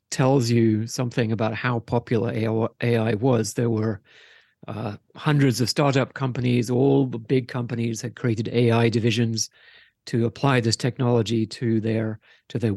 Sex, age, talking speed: male, 50-69, 140 wpm